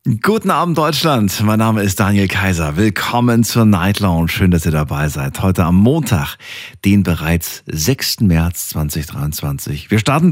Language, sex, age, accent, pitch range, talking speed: German, male, 40-59, German, 90-125 Hz, 155 wpm